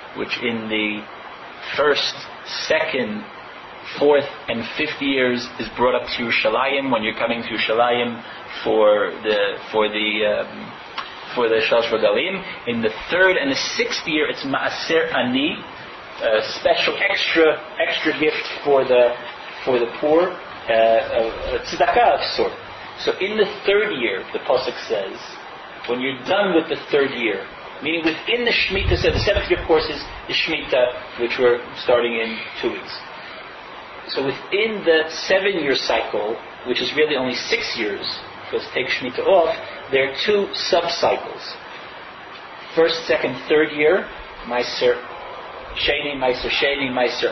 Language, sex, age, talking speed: English, male, 30-49, 145 wpm